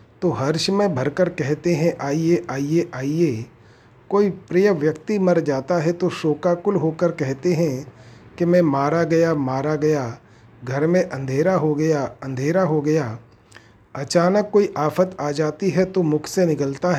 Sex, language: male, Hindi